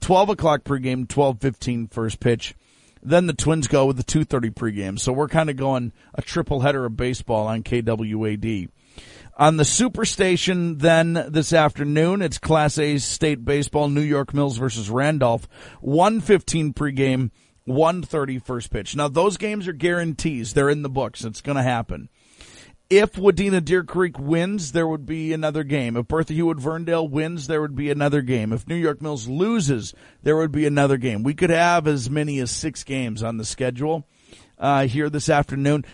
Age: 40-59